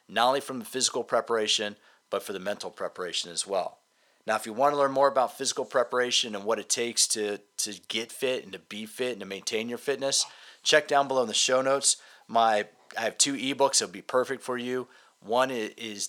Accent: American